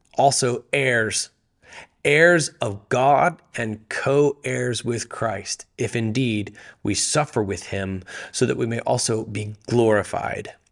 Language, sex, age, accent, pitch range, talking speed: English, male, 30-49, American, 120-140 Hz, 125 wpm